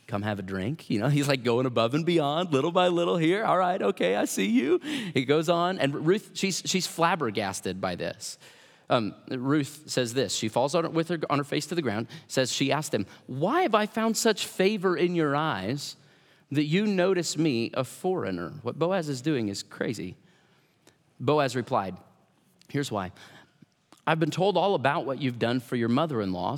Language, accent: English, American